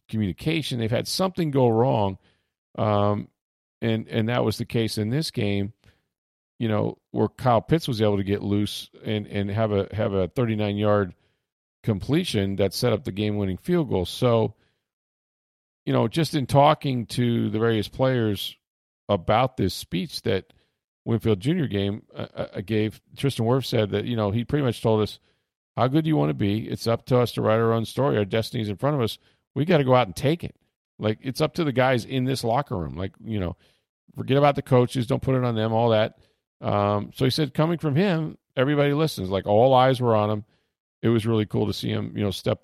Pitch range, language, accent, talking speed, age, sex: 100-130 Hz, English, American, 210 wpm, 40-59, male